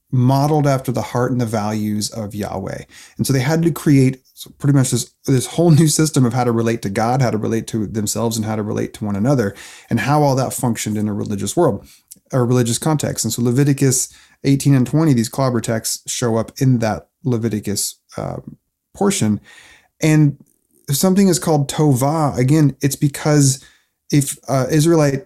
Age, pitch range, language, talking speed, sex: 30-49, 115-145 Hz, English, 190 wpm, male